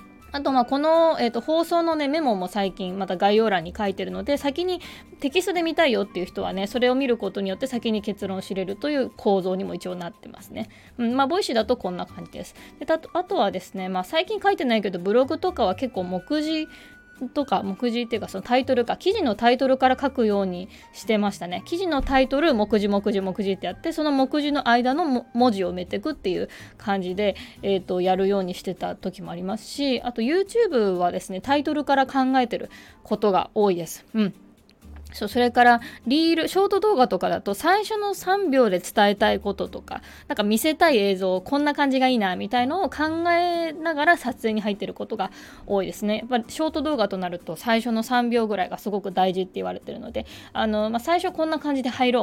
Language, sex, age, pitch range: Japanese, female, 20-39, 195-285 Hz